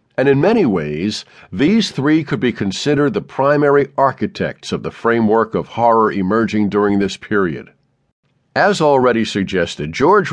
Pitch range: 110-140 Hz